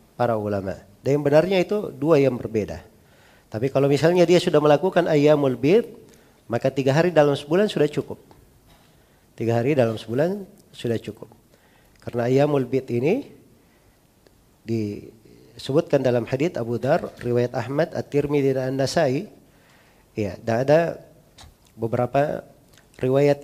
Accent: native